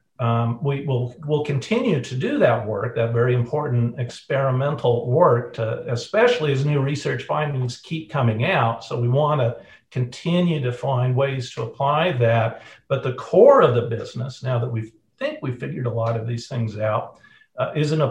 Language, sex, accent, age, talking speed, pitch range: English, male, American, 50-69, 185 wpm, 115-145 Hz